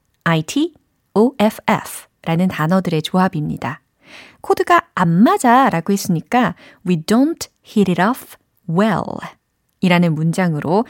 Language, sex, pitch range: Korean, female, 175-265 Hz